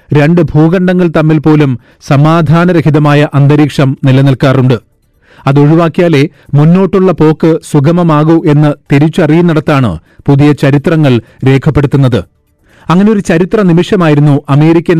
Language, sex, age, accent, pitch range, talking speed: Malayalam, male, 40-59, native, 140-165 Hz, 80 wpm